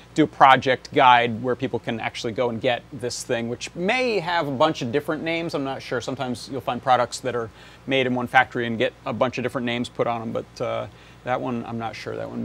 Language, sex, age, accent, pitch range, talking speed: English, male, 30-49, American, 125-155 Hz, 255 wpm